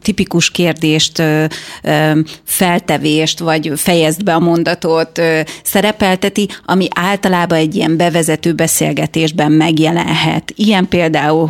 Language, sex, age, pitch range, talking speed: Hungarian, female, 30-49, 160-185 Hz, 95 wpm